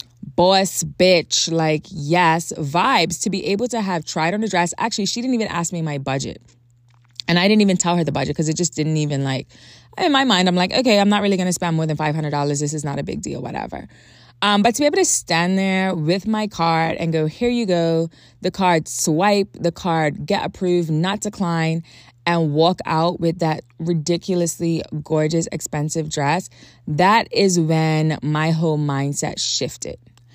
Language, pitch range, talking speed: English, 150-185 Hz, 195 wpm